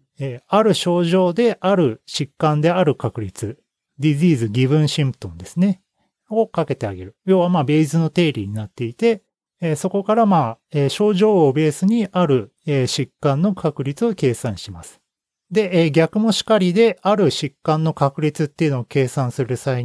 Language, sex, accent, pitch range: Japanese, male, native, 135-195 Hz